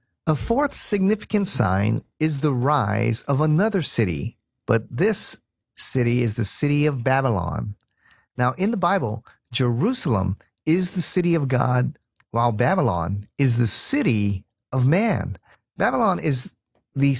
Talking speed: 135 wpm